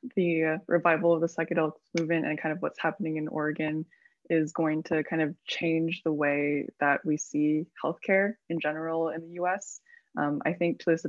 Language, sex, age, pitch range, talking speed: English, female, 20-39, 145-165 Hz, 190 wpm